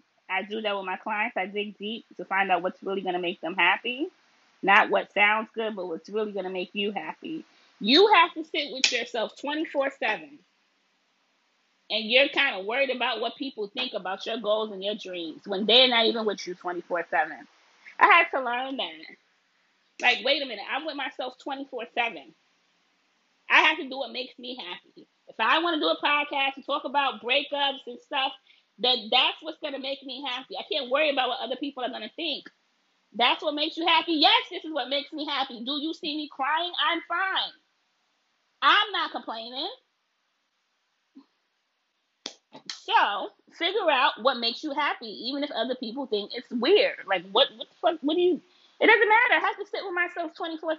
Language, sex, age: English, female, 20-39